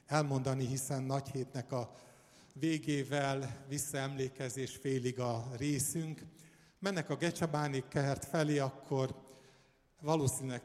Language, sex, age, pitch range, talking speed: Hungarian, male, 50-69, 125-145 Hz, 90 wpm